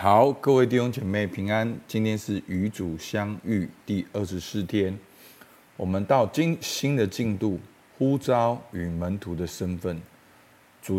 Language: Chinese